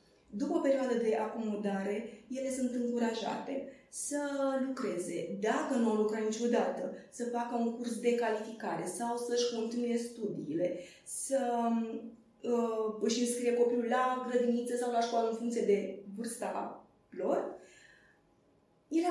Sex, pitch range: female, 215-275 Hz